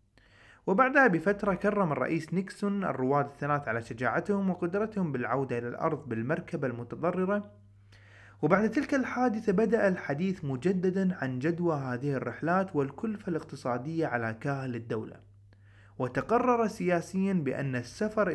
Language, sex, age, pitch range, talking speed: Arabic, male, 30-49, 125-190 Hz, 110 wpm